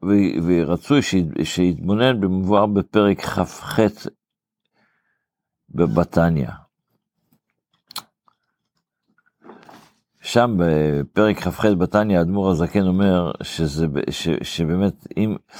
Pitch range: 85-105 Hz